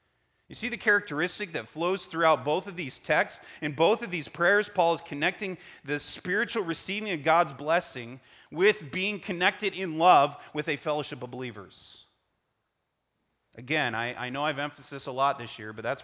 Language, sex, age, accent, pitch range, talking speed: English, male, 30-49, American, 130-175 Hz, 175 wpm